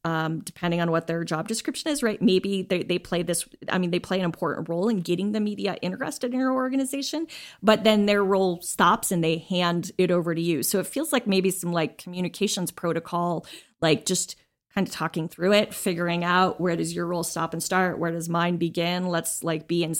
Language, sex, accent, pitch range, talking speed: English, female, American, 170-200 Hz, 220 wpm